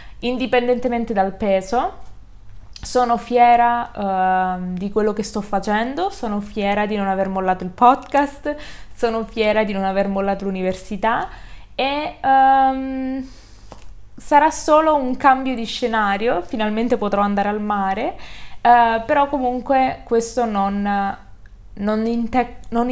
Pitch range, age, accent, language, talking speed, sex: 200-240 Hz, 20-39, native, Italian, 115 wpm, female